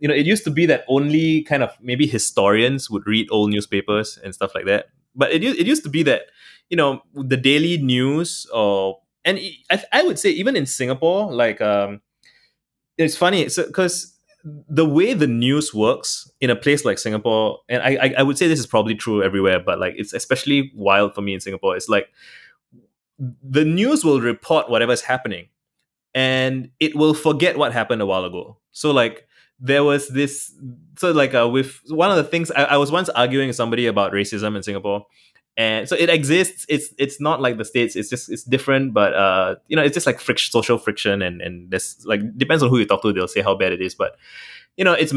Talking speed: 215 wpm